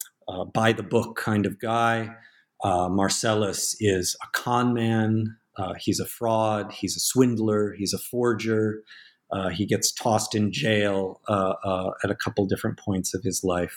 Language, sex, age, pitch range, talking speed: English, male, 40-59, 100-120 Hz, 170 wpm